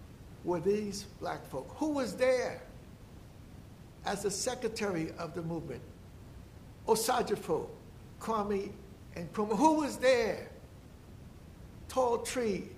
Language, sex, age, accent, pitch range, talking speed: English, male, 60-79, American, 170-250 Hz, 100 wpm